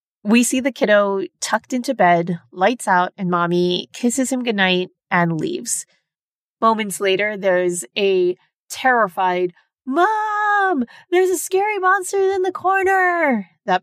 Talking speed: 130 wpm